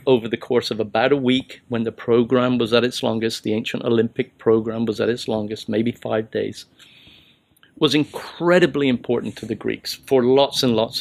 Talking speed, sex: 190 wpm, male